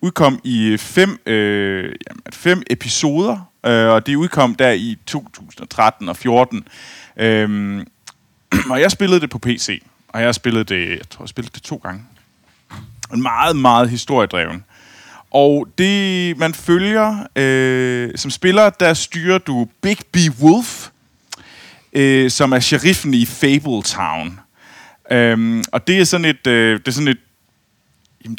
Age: 30-49